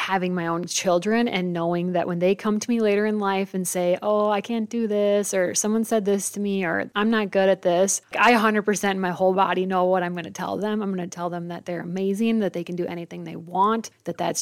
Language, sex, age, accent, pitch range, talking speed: English, female, 20-39, American, 180-210 Hz, 265 wpm